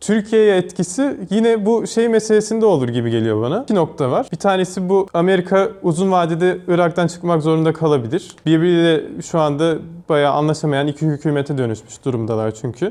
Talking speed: 155 wpm